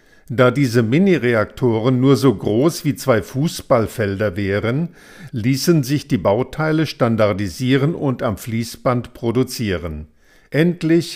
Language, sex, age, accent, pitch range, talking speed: German, male, 50-69, German, 110-145 Hz, 110 wpm